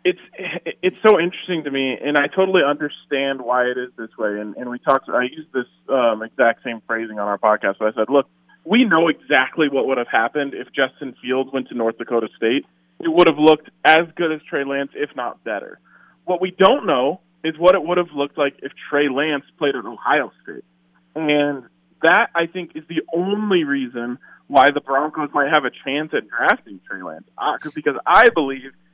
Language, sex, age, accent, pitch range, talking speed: English, male, 20-39, American, 125-160 Hz, 210 wpm